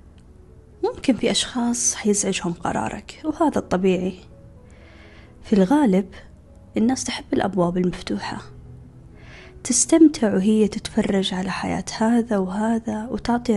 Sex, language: female, Arabic